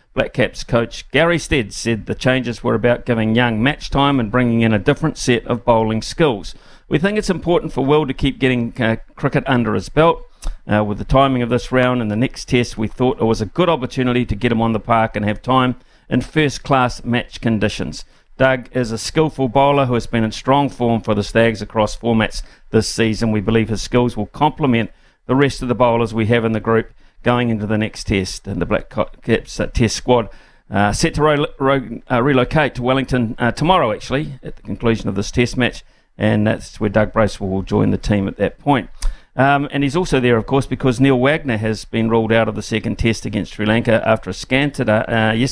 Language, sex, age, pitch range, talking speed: English, male, 50-69, 110-130 Hz, 225 wpm